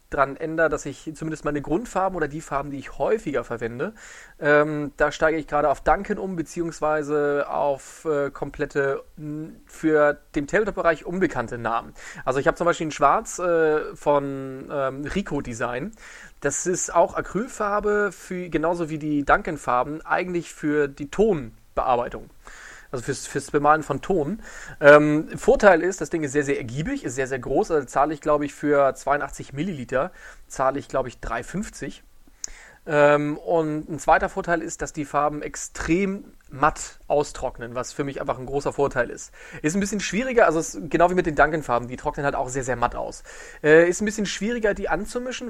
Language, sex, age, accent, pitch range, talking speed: German, male, 30-49, German, 140-175 Hz, 175 wpm